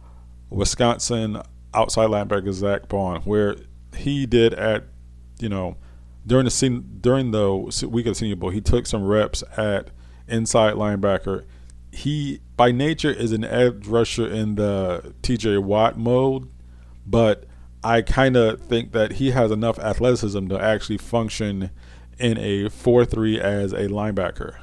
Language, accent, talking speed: English, American, 145 wpm